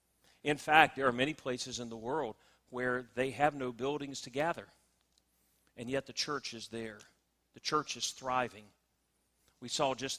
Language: English